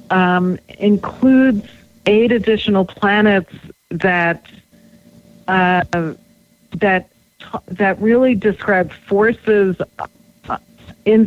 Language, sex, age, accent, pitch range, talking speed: English, female, 50-69, American, 165-195 Hz, 70 wpm